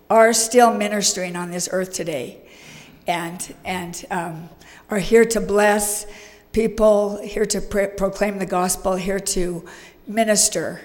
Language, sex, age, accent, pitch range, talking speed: English, female, 60-79, American, 180-210 Hz, 125 wpm